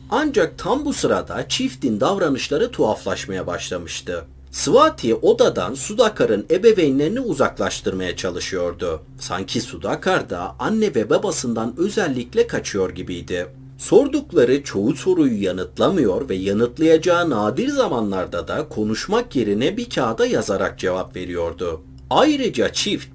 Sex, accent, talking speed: male, native, 105 wpm